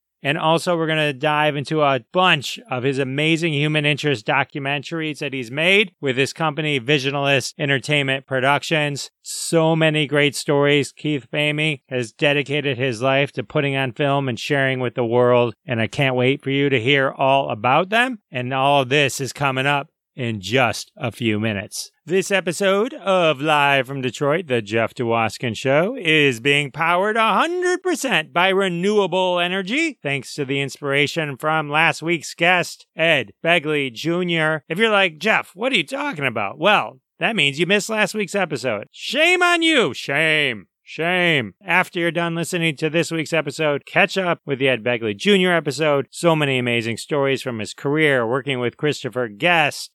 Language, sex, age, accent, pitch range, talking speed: English, male, 30-49, American, 130-170 Hz, 170 wpm